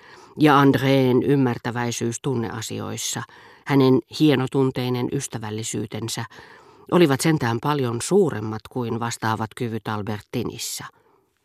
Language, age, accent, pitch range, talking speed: Finnish, 40-59, native, 125-165 Hz, 80 wpm